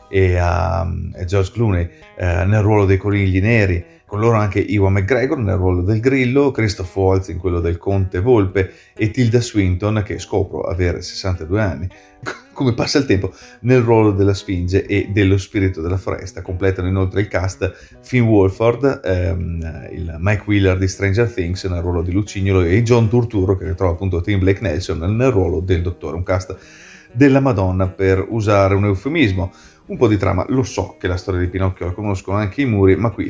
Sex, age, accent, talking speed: male, 30-49, native, 185 wpm